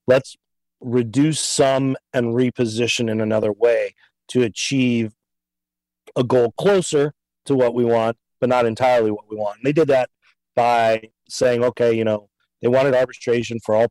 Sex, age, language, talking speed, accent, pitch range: male, 40-59, English, 155 wpm, American, 105-130 Hz